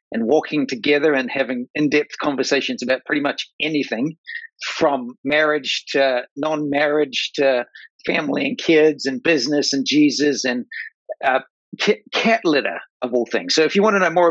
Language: English